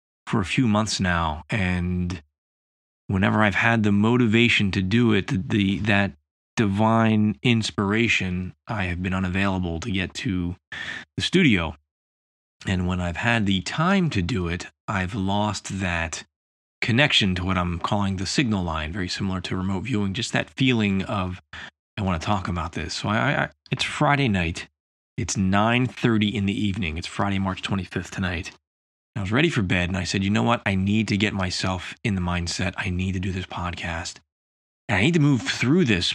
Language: English